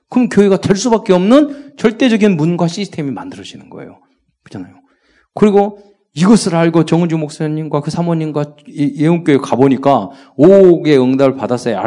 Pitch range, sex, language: 110-165 Hz, male, Korean